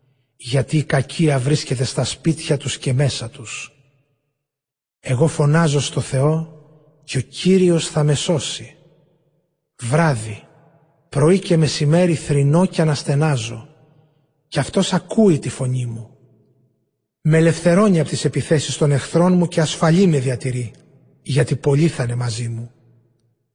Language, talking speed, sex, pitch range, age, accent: Greek, 130 wpm, male, 135-165 Hz, 30-49, native